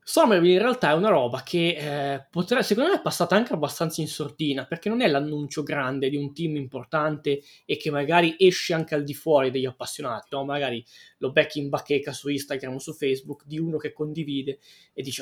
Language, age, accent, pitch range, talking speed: Italian, 20-39, native, 145-185 Hz, 215 wpm